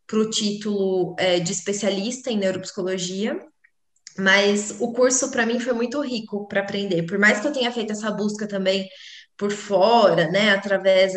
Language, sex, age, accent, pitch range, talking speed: Portuguese, female, 20-39, Brazilian, 200-230 Hz, 165 wpm